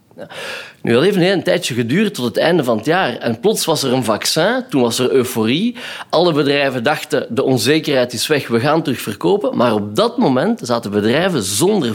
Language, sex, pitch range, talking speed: Dutch, male, 115-150 Hz, 200 wpm